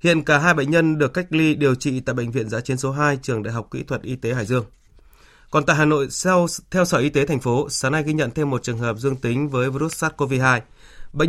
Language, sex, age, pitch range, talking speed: Vietnamese, male, 20-39, 120-150 Hz, 270 wpm